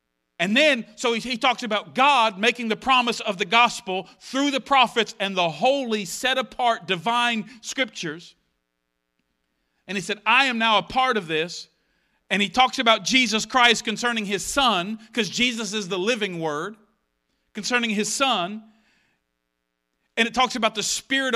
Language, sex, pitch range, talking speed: English, male, 200-255 Hz, 155 wpm